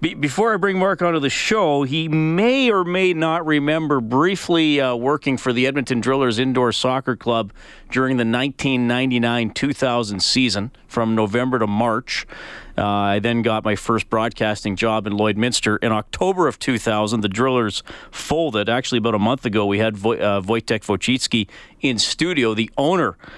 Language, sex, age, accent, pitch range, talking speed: English, male, 40-59, American, 110-135 Hz, 160 wpm